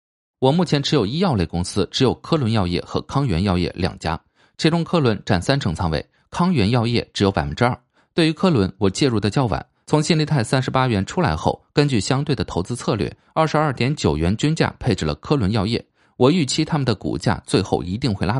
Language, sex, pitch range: Chinese, male, 95-150 Hz